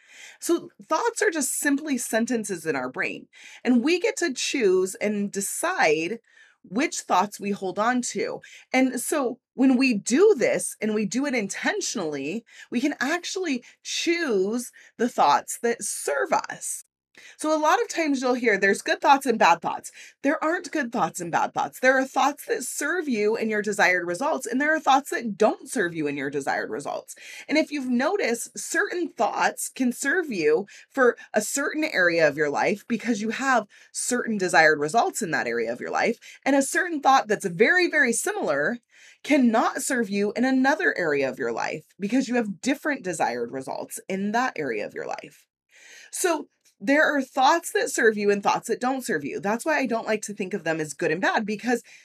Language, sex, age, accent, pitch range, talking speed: English, female, 20-39, American, 210-290 Hz, 195 wpm